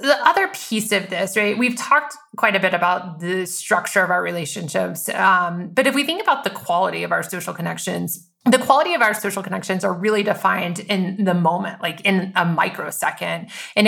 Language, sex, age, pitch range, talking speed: English, female, 30-49, 180-225 Hz, 200 wpm